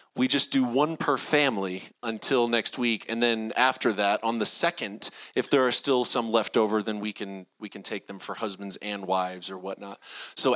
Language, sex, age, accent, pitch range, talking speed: English, male, 30-49, American, 115-170 Hz, 210 wpm